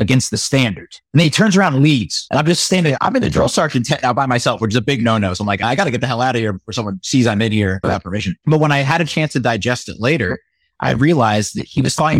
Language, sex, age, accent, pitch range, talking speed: English, male, 30-49, American, 105-150 Hz, 320 wpm